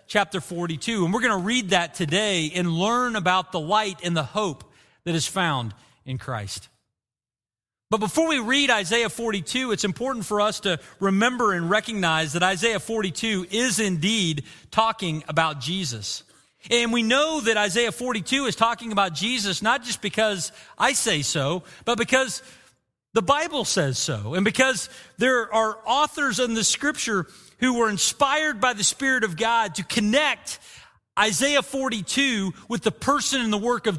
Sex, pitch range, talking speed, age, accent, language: male, 170-235 Hz, 165 wpm, 40-59, American, English